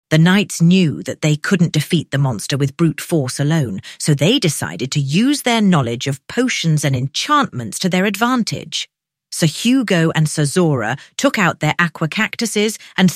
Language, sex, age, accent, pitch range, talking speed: English, female, 40-59, British, 145-195 Hz, 175 wpm